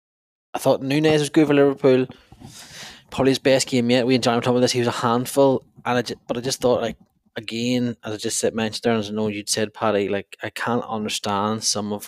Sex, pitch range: male, 100-125 Hz